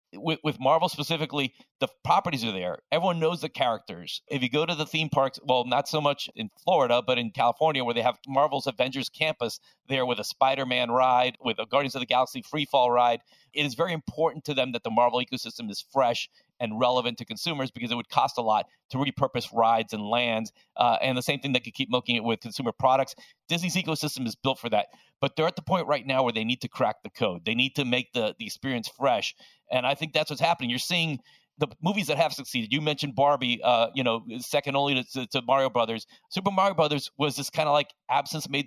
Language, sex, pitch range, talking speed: English, male, 120-150 Hz, 235 wpm